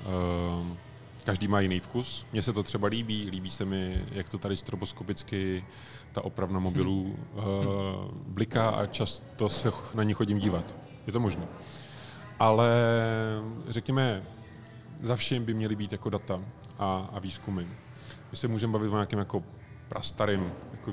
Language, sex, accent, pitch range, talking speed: Czech, male, native, 100-120 Hz, 150 wpm